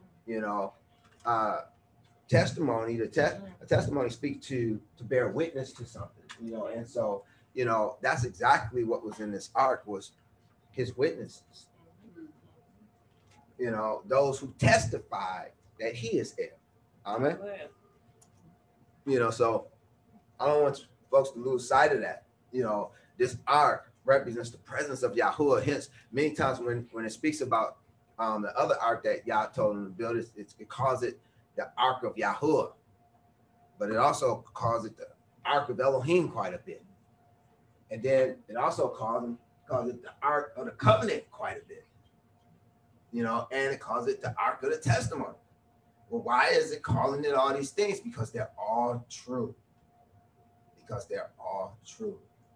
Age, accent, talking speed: 30-49, American, 165 wpm